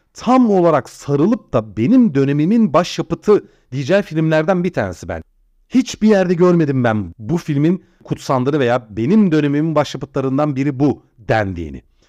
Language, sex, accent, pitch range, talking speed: Turkish, male, native, 115-175 Hz, 130 wpm